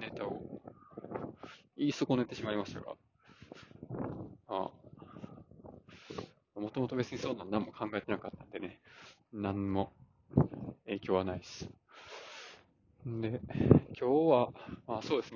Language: Japanese